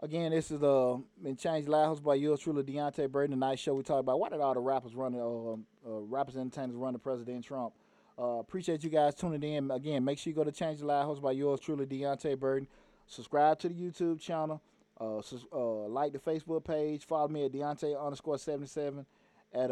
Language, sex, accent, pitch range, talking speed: English, male, American, 130-150 Hz, 230 wpm